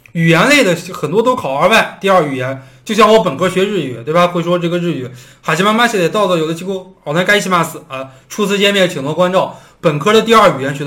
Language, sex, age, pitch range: Chinese, male, 20-39, 145-210 Hz